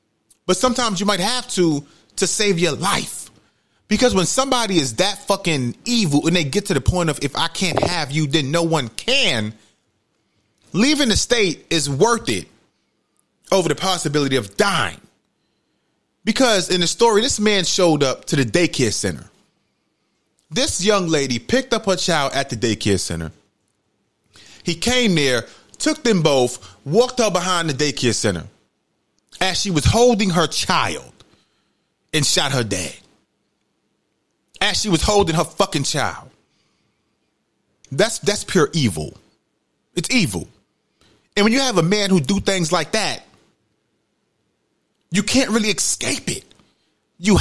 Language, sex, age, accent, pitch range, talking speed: English, male, 30-49, American, 140-205 Hz, 150 wpm